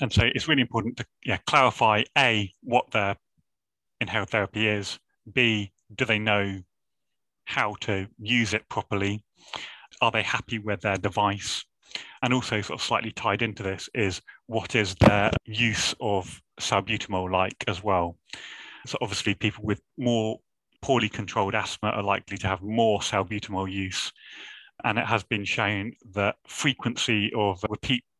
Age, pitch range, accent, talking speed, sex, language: 30-49, 95-115 Hz, British, 155 wpm, male, English